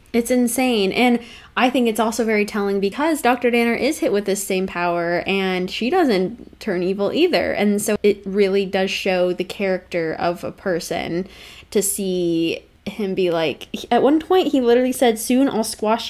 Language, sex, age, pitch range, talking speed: English, female, 20-39, 185-230 Hz, 185 wpm